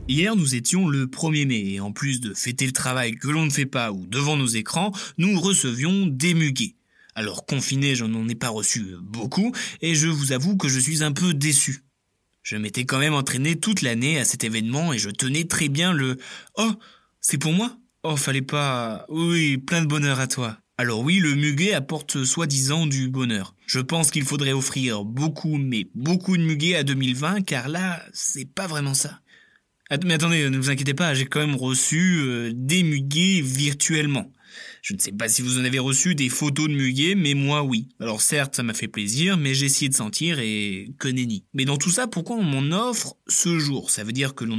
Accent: French